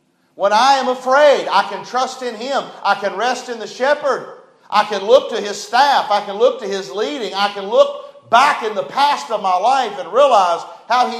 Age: 50-69